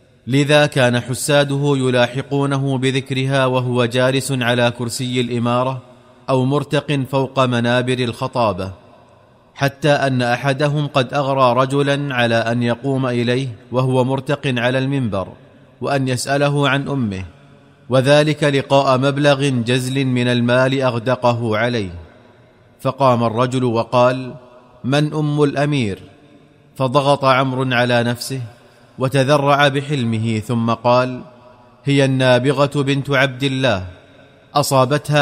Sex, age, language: male, 30-49, Arabic